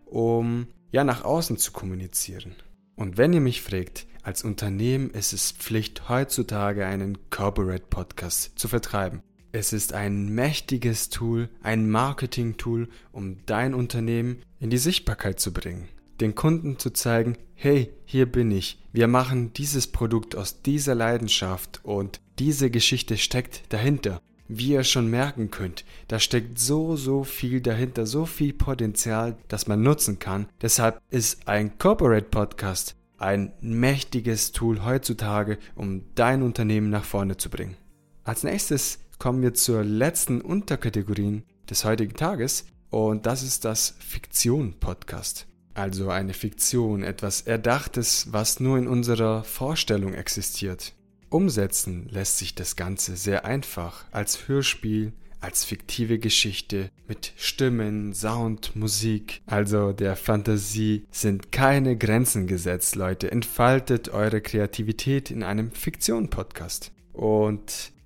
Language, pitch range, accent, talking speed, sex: German, 100-125 Hz, German, 130 wpm, male